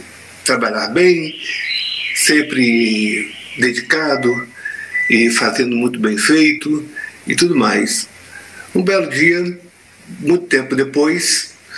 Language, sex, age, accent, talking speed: Portuguese, male, 60-79, Brazilian, 90 wpm